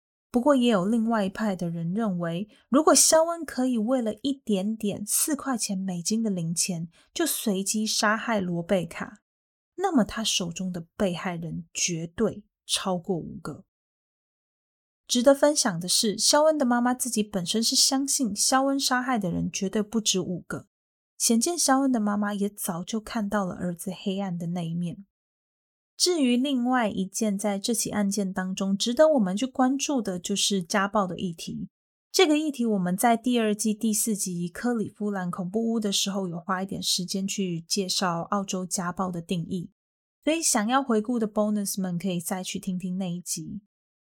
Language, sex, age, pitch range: Chinese, female, 20-39, 185-245 Hz